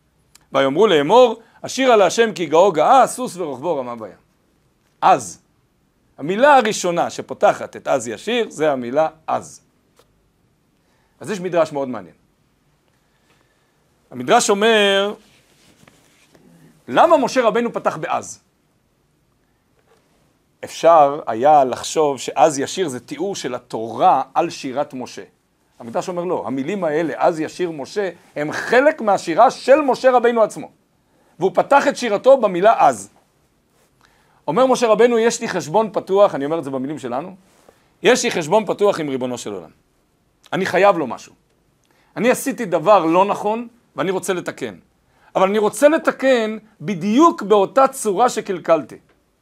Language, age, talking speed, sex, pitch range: Hebrew, 50-69, 130 wpm, male, 175-240 Hz